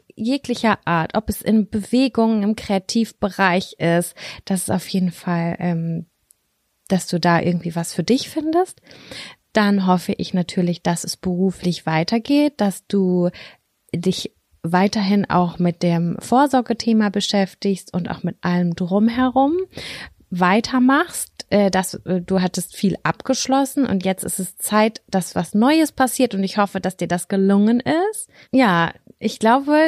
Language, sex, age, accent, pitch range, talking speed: German, female, 30-49, German, 180-230 Hz, 140 wpm